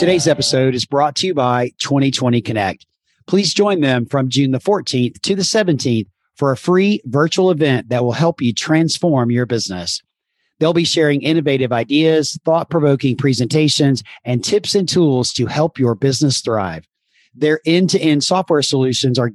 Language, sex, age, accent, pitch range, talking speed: English, male, 40-59, American, 120-165 Hz, 160 wpm